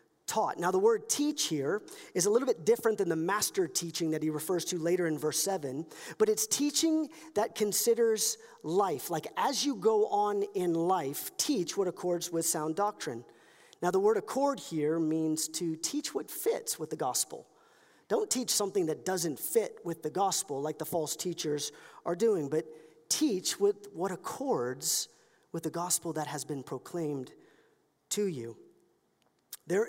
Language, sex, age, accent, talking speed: English, male, 40-59, American, 170 wpm